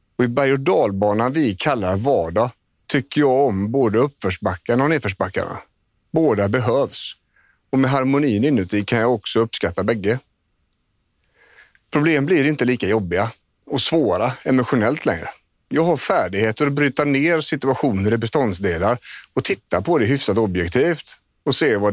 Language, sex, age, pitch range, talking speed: Swedish, male, 40-59, 105-130 Hz, 140 wpm